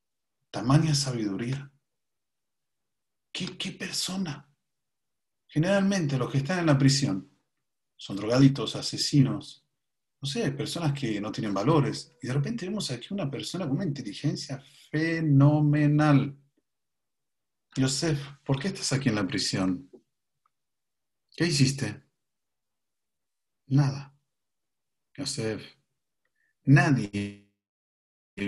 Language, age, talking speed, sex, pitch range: Spanish, 40-59, 100 wpm, male, 105-145 Hz